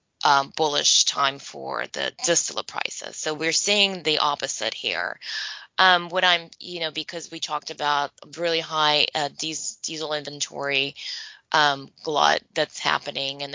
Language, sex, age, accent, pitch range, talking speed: English, female, 20-39, American, 140-170 Hz, 140 wpm